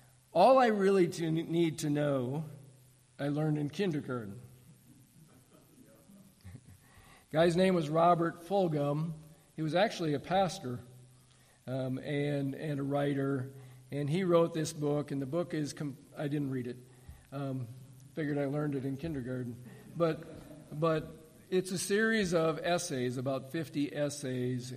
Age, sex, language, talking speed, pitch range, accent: 50-69, male, English, 140 wpm, 130-155 Hz, American